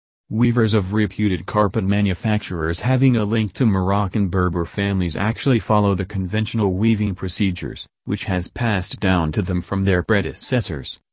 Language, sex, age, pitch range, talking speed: English, male, 40-59, 95-110 Hz, 145 wpm